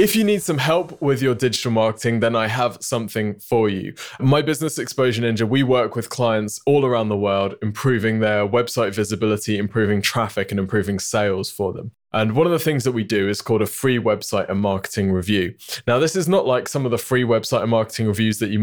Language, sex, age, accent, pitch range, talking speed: English, male, 20-39, British, 105-125 Hz, 220 wpm